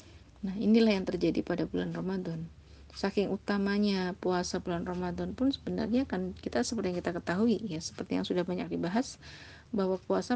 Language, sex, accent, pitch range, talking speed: Indonesian, female, native, 175-200 Hz, 160 wpm